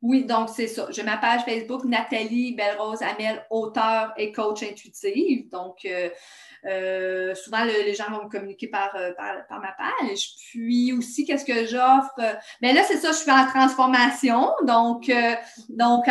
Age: 30-49